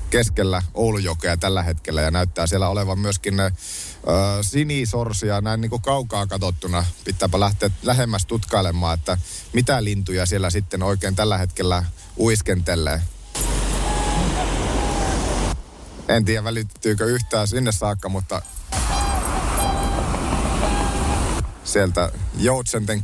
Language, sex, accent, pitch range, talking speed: Finnish, male, native, 90-120 Hz, 100 wpm